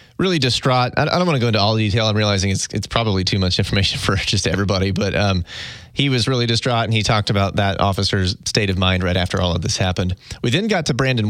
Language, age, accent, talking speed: English, 30-49, American, 255 wpm